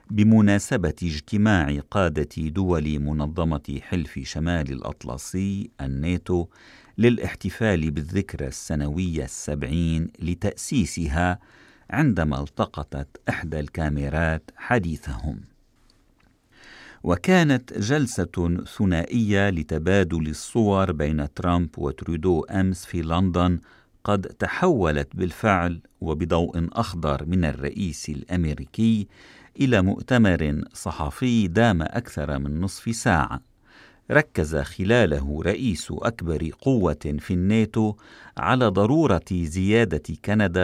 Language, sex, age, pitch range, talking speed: Arabic, male, 50-69, 75-105 Hz, 85 wpm